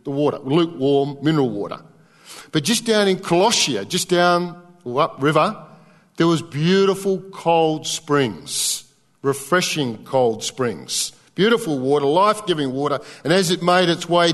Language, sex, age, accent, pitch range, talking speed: English, male, 50-69, Australian, 150-180 Hz, 135 wpm